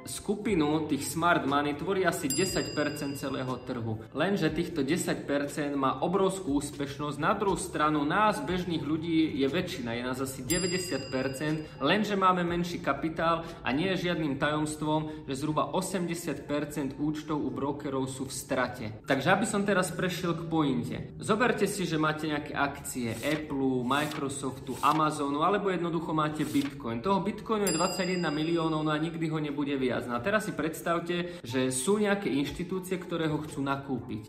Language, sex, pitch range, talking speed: Slovak, male, 140-170 Hz, 155 wpm